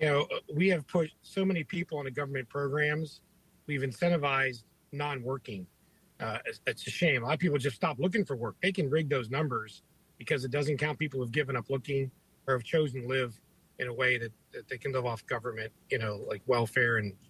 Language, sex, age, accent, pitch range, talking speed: English, male, 50-69, American, 130-165 Hz, 220 wpm